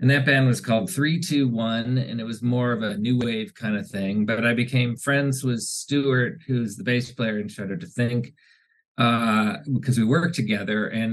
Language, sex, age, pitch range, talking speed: English, male, 40-59, 105-135 Hz, 200 wpm